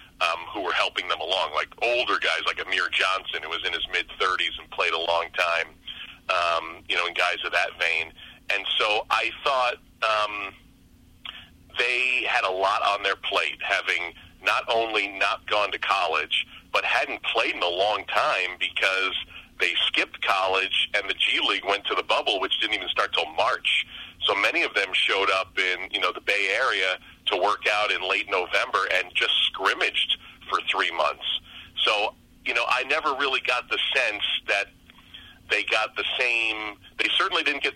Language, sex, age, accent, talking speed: English, male, 40-59, American, 185 wpm